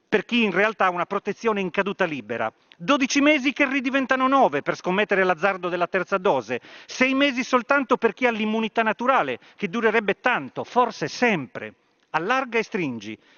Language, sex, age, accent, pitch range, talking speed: Italian, male, 40-59, native, 185-240 Hz, 165 wpm